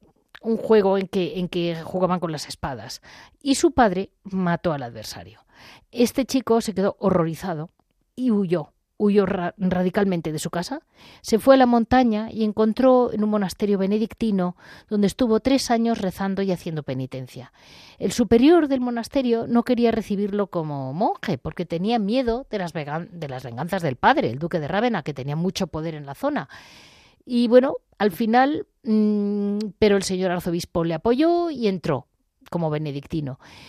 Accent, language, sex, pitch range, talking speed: Spanish, Spanish, female, 170-235 Hz, 165 wpm